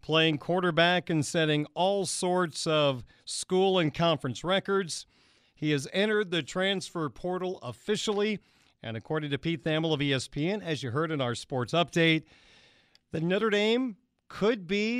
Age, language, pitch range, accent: 40-59, English, 145-190 Hz, American